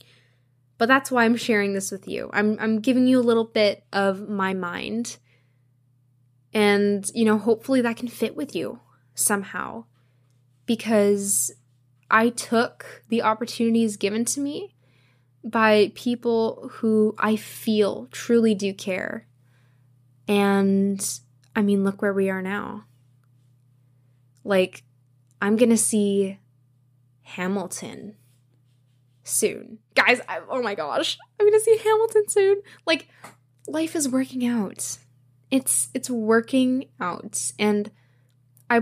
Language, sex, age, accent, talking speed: English, female, 10-29, American, 120 wpm